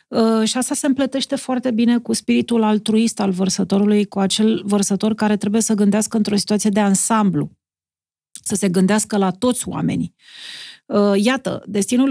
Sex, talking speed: female, 150 wpm